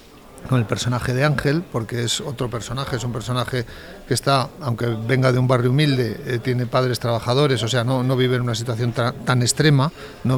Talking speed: 210 wpm